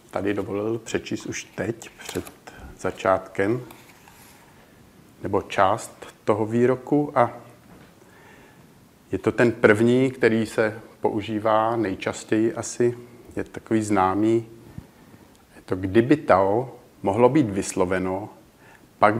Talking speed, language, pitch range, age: 100 wpm, Czech, 100-120 Hz, 50-69